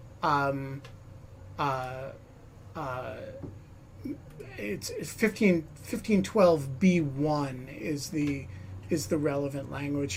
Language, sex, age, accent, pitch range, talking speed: English, male, 40-59, American, 140-170 Hz, 75 wpm